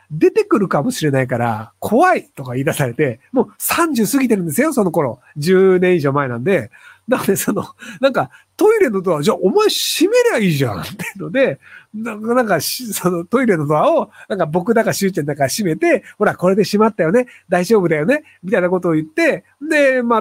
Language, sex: Japanese, male